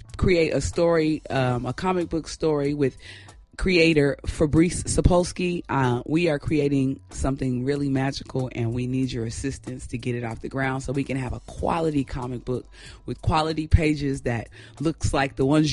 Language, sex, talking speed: English, female, 175 wpm